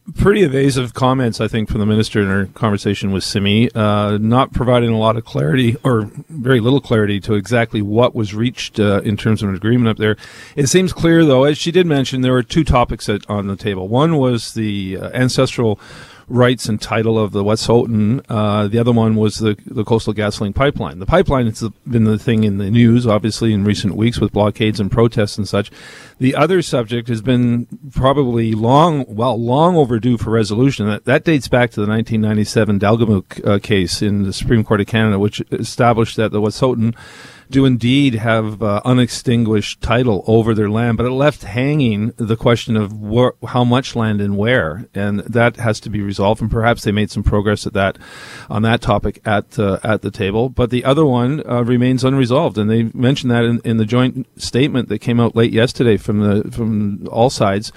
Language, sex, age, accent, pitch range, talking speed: English, male, 50-69, American, 105-125 Hz, 205 wpm